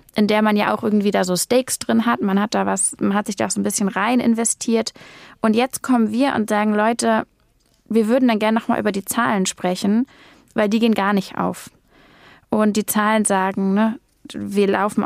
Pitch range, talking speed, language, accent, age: 205-230 Hz, 215 wpm, German, German, 20-39